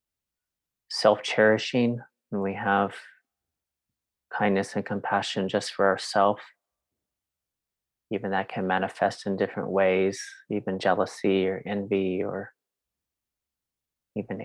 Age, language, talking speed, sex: 30-49, English, 95 wpm, male